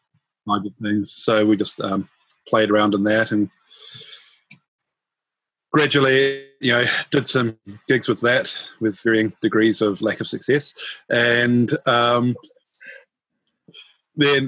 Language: English